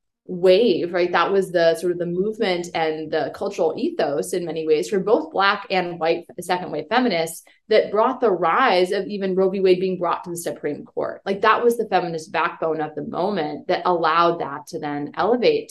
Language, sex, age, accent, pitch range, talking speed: English, female, 20-39, American, 165-215 Hz, 205 wpm